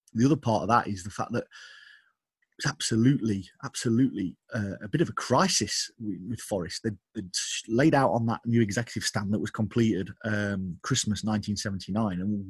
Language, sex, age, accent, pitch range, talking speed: English, male, 30-49, British, 100-120 Hz, 180 wpm